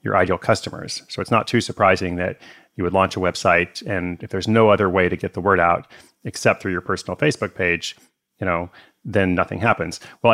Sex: male